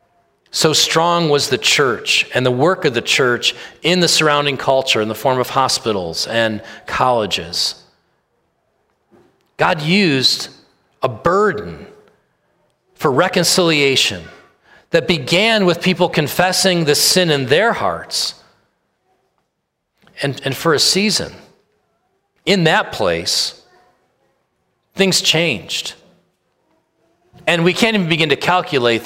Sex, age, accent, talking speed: male, 40-59, American, 115 wpm